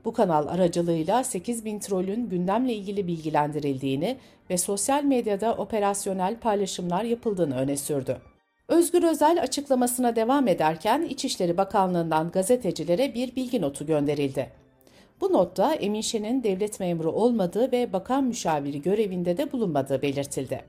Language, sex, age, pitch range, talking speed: Turkish, female, 60-79, 175-255 Hz, 125 wpm